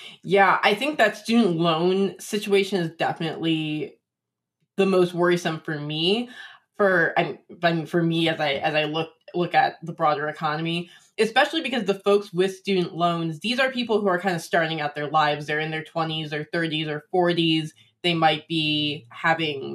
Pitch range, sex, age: 155-190 Hz, female, 20-39